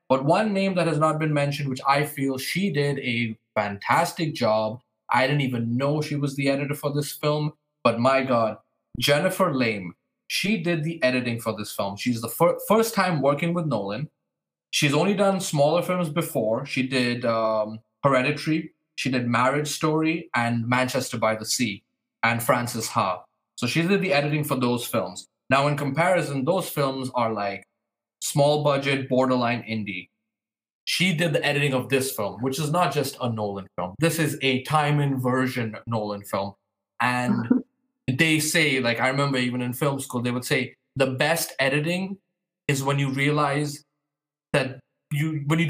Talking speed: 170 wpm